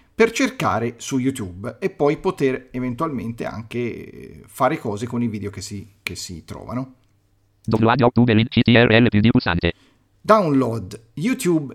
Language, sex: Italian, male